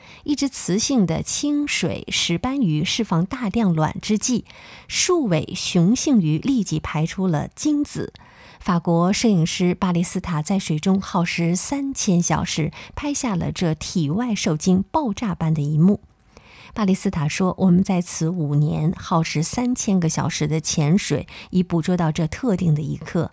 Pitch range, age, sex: 165-220 Hz, 20-39, female